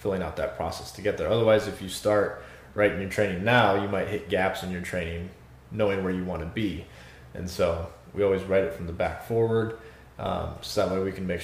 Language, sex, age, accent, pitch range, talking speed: English, male, 20-39, American, 85-110 Hz, 235 wpm